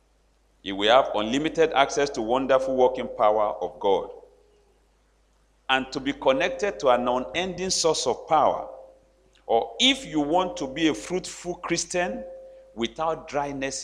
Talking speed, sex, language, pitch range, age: 140 wpm, male, English, 105-165 Hz, 50-69